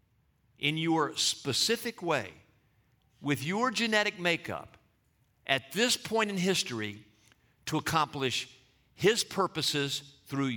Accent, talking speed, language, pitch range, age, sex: American, 100 wpm, English, 120-180 Hz, 50-69, male